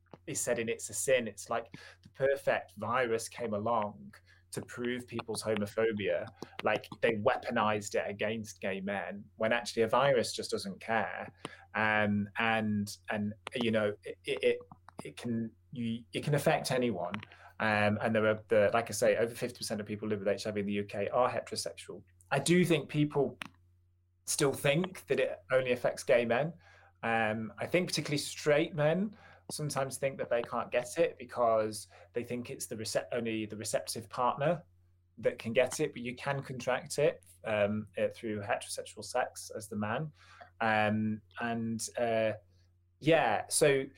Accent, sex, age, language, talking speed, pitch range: British, male, 20-39, English, 170 wpm, 100-125 Hz